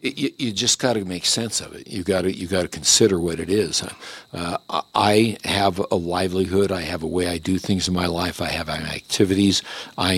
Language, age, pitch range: English, 60-79, 90-100 Hz